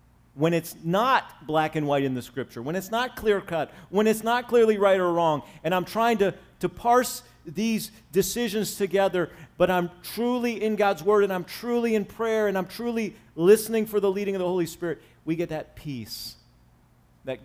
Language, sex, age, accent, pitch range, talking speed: English, male, 40-59, American, 125-200 Hz, 195 wpm